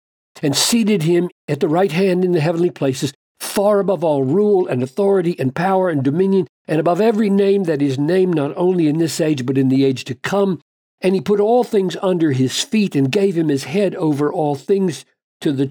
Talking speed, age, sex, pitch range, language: 220 wpm, 60-79, male, 130-180 Hz, English